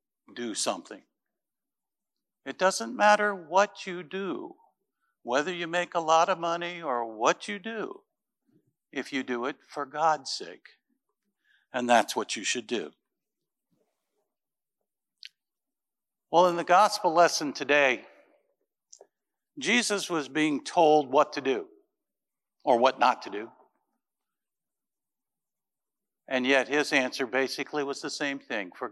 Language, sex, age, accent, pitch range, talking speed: English, male, 60-79, American, 130-205 Hz, 125 wpm